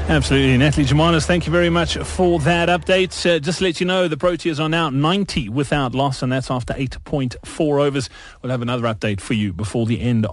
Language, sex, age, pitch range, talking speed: English, male, 30-49, 130-175 Hz, 215 wpm